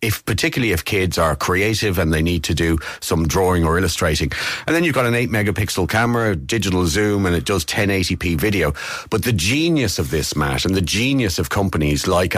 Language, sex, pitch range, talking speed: English, male, 85-110 Hz, 200 wpm